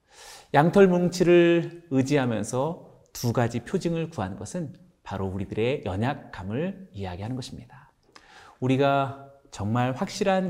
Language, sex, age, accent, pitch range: Korean, male, 40-59, native, 110-160 Hz